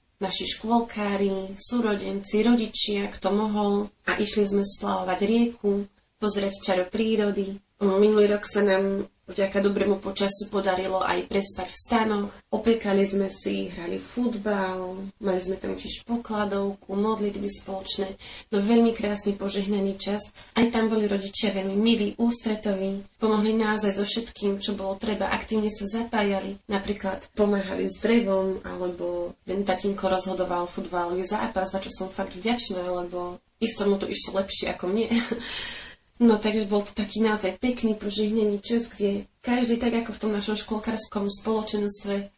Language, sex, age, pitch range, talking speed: Slovak, female, 30-49, 195-215 Hz, 145 wpm